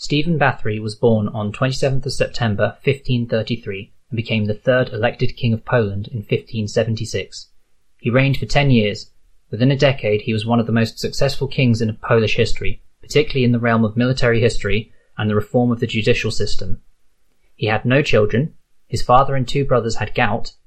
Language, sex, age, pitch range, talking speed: English, male, 30-49, 110-125 Hz, 185 wpm